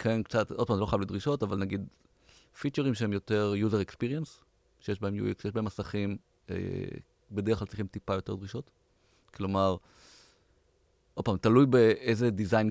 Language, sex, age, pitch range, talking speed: Hebrew, male, 30-49, 100-125 Hz, 160 wpm